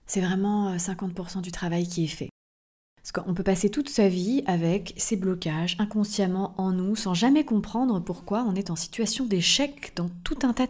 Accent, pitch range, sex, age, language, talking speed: French, 180-225 Hz, female, 30-49, French, 190 wpm